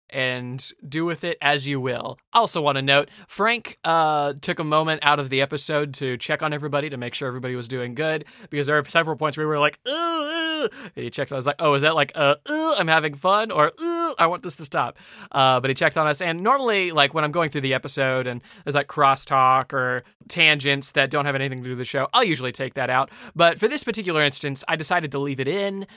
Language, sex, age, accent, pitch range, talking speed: English, male, 20-39, American, 135-165 Hz, 250 wpm